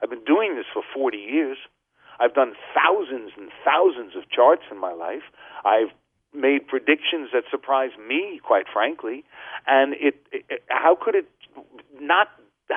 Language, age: English, 50-69